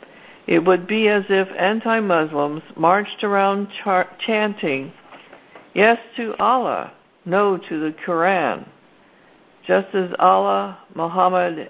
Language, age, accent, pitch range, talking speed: English, 60-79, American, 150-195 Hz, 110 wpm